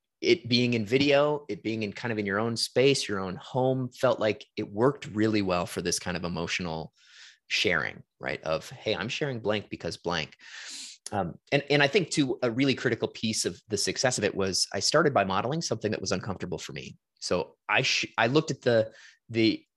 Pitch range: 100-135 Hz